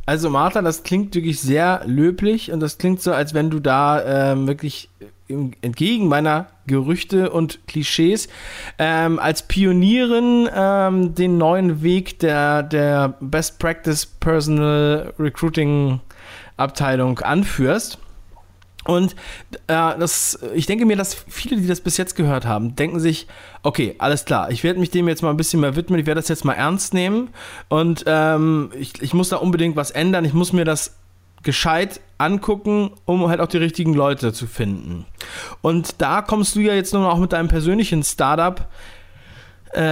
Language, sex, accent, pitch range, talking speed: German, male, German, 135-180 Hz, 160 wpm